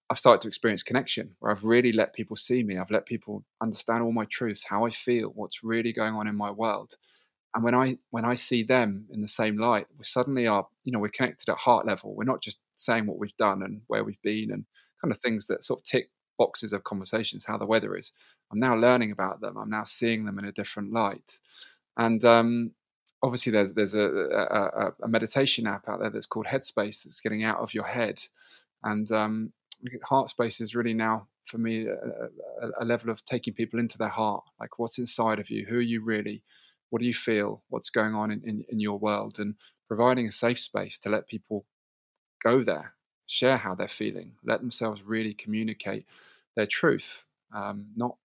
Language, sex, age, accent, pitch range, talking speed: English, male, 20-39, British, 105-115 Hz, 215 wpm